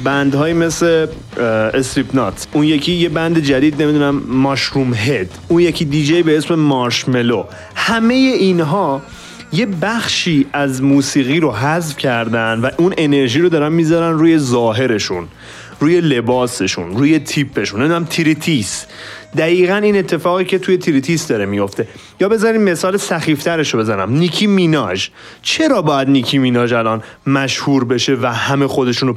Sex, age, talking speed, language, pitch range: male, 30-49, 135 wpm, Persian, 130-175 Hz